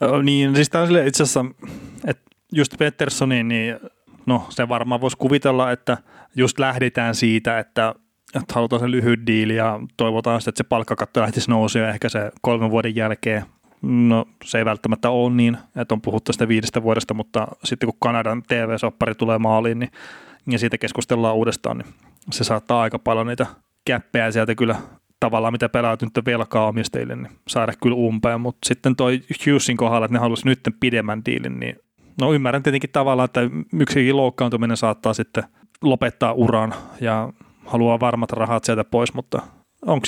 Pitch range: 115-125 Hz